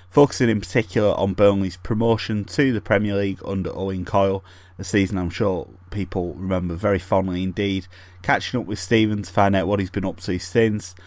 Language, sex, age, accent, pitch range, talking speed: English, male, 30-49, British, 90-105 Hz, 190 wpm